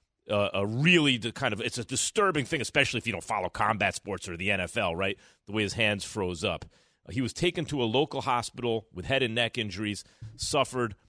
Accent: American